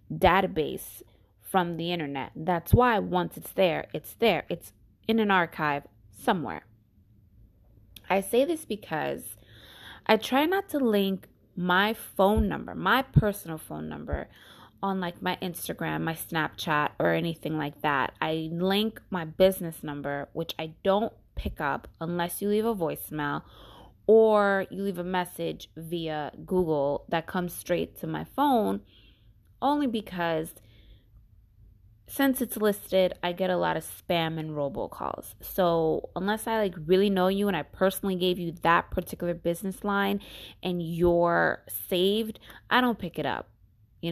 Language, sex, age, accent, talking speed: English, female, 20-39, American, 145 wpm